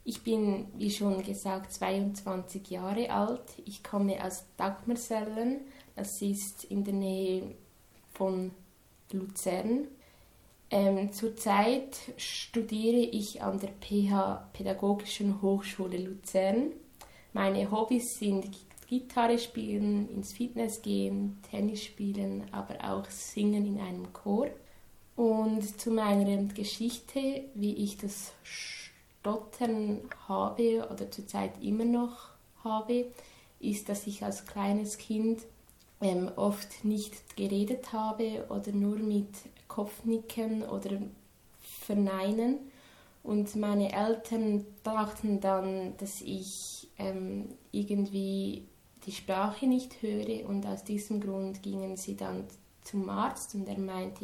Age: 20-39